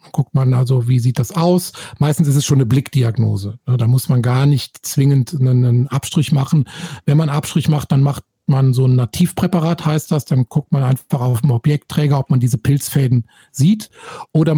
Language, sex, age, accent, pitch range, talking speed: German, male, 50-69, German, 135-155 Hz, 195 wpm